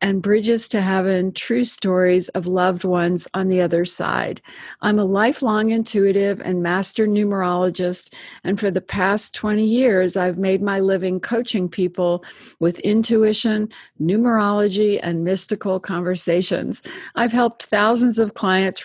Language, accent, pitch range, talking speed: English, American, 185-215 Hz, 135 wpm